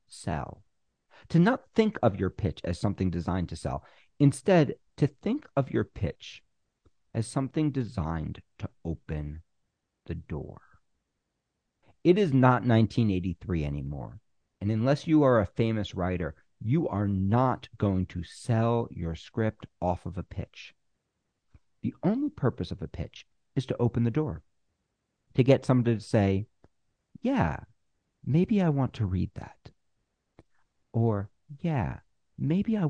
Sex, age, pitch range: male, 50-69, 95-145 Hz